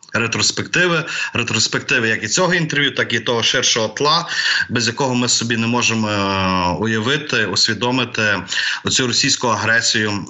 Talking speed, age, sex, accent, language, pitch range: 130 wpm, 20-39, male, native, Ukrainian, 100-140 Hz